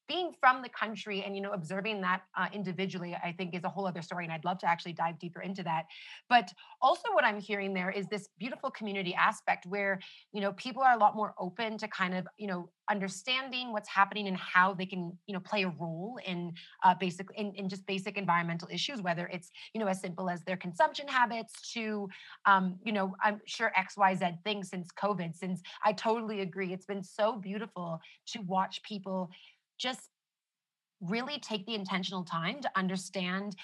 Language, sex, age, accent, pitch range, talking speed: English, female, 30-49, American, 185-220 Hz, 205 wpm